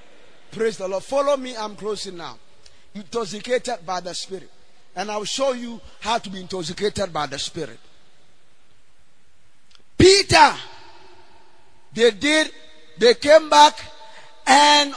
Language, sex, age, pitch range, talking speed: English, male, 50-69, 235-310 Hz, 125 wpm